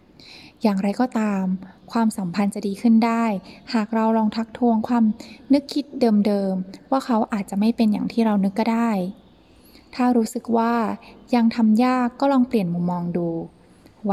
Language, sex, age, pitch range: Thai, female, 20-39, 200-235 Hz